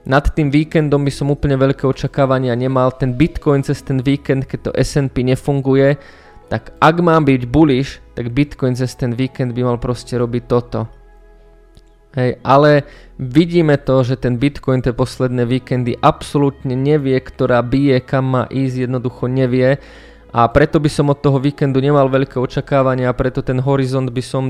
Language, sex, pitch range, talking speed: Slovak, male, 125-140 Hz, 165 wpm